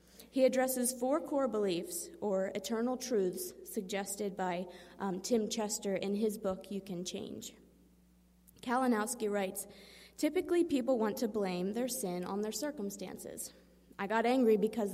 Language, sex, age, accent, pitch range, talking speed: English, female, 20-39, American, 190-230 Hz, 140 wpm